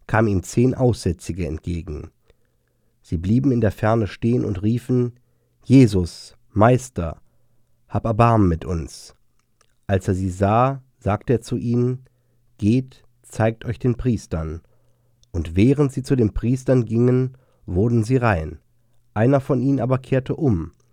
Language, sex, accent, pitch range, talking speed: German, male, German, 100-125 Hz, 140 wpm